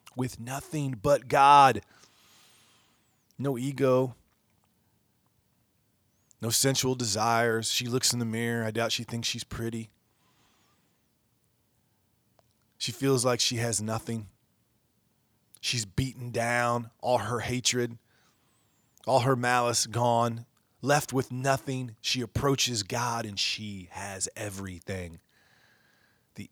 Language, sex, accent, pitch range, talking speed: English, male, American, 105-120 Hz, 105 wpm